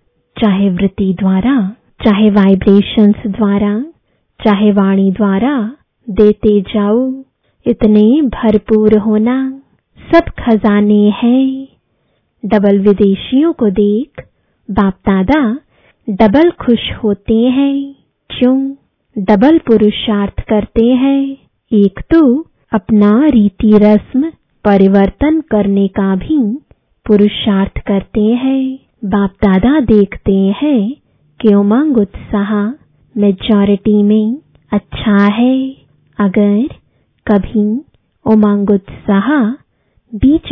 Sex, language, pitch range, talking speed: female, English, 205-255 Hz, 85 wpm